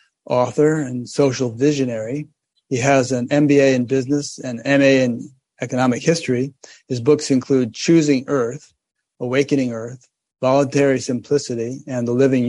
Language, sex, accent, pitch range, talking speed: English, male, American, 120-140 Hz, 130 wpm